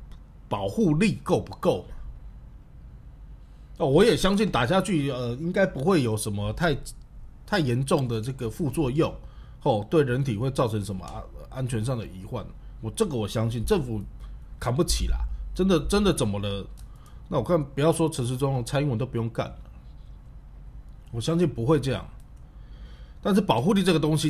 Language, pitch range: Chinese, 95-155 Hz